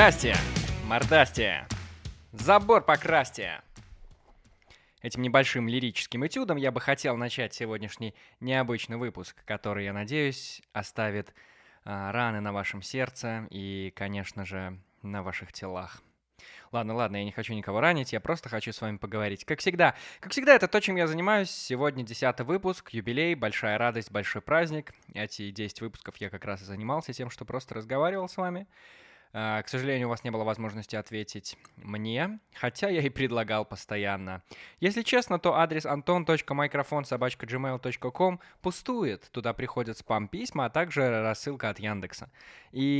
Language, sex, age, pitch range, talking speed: Russian, male, 20-39, 105-145 Hz, 140 wpm